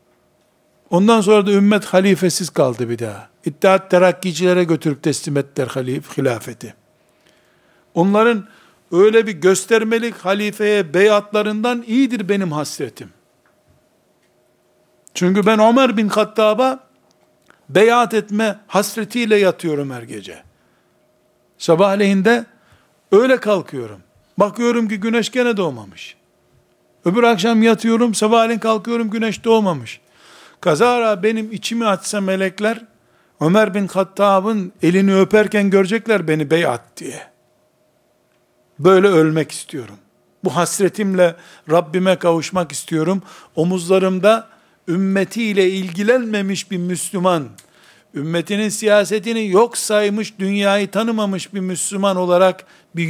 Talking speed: 100 wpm